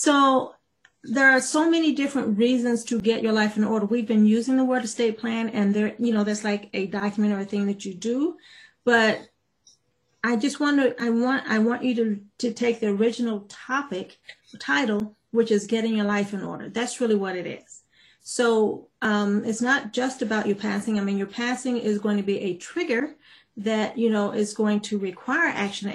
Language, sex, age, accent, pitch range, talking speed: English, female, 40-59, American, 205-245 Hz, 205 wpm